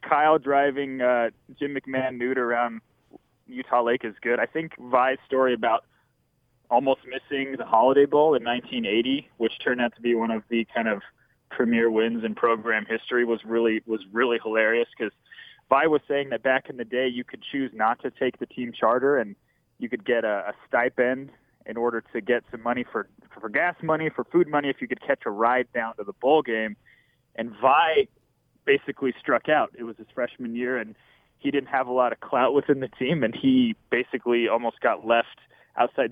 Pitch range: 115-135 Hz